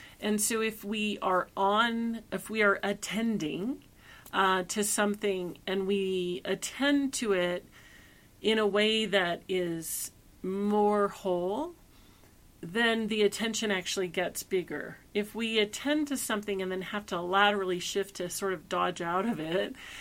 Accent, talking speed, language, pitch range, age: American, 145 wpm, English, 185-220 Hz, 40-59